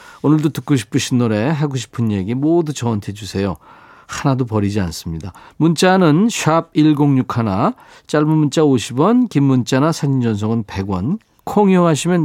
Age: 40-59